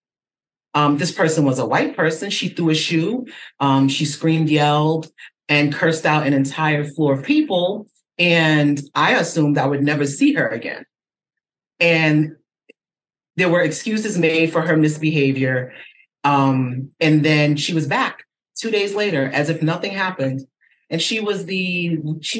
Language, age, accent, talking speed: English, 30-49, American, 155 wpm